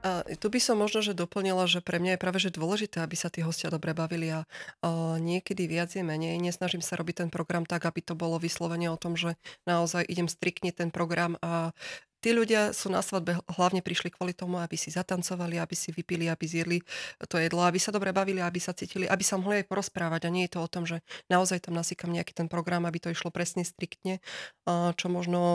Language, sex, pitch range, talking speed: Slovak, female, 170-185 Hz, 225 wpm